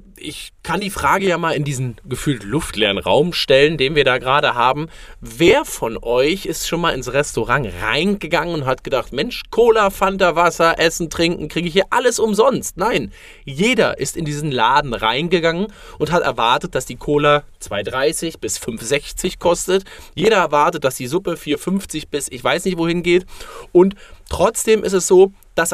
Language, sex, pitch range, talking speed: German, male, 150-200 Hz, 175 wpm